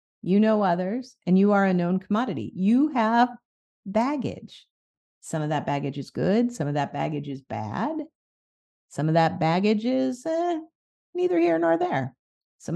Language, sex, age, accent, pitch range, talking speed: English, female, 50-69, American, 175-235 Hz, 165 wpm